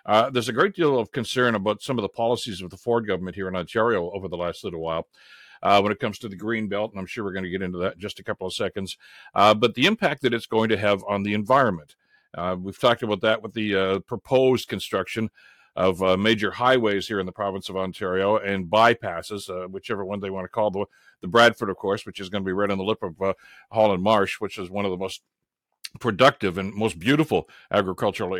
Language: English